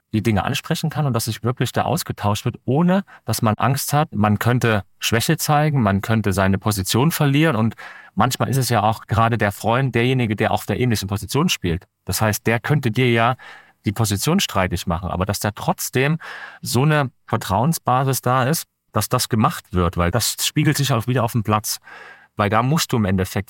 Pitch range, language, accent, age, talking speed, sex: 95-125 Hz, German, German, 40-59, 200 wpm, male